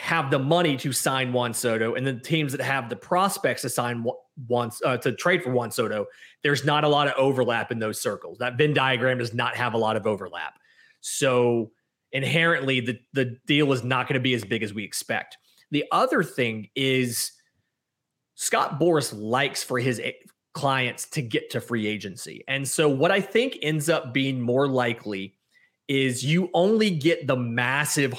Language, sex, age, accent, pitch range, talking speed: English, male, 30-49, American, 125-150 Hz, 185 wpm